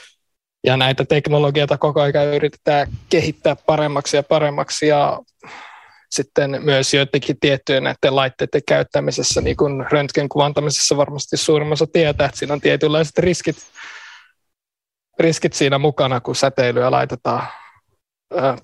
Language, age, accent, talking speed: Finnish, 20-39, native, 110 wpm